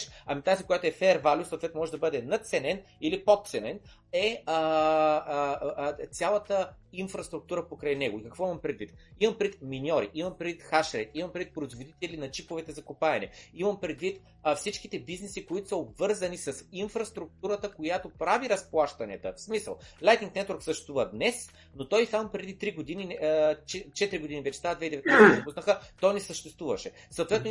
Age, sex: 30-49, male